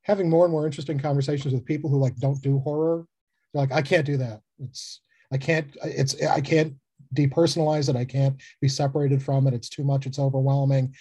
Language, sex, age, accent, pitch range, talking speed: English, male, 40-59, American, 130-155 Hz, 205 wpm